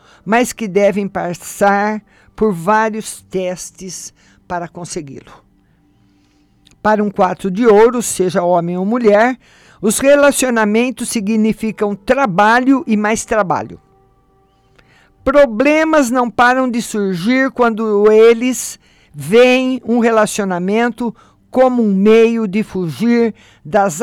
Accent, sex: Brazilian, male